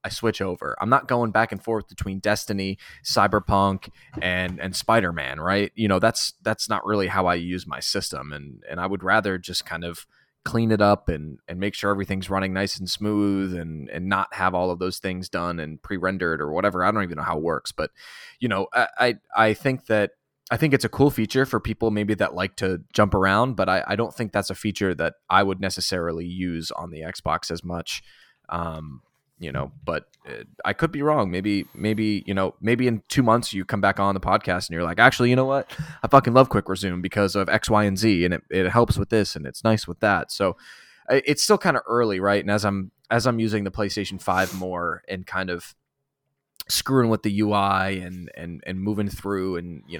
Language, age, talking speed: English, 20-39, 225 wpm